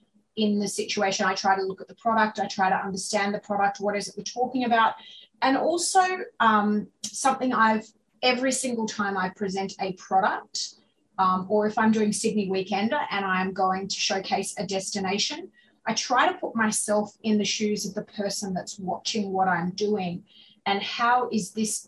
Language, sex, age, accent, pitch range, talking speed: English, female, 30-49, Australian, 195-225 Hz, 185 wpm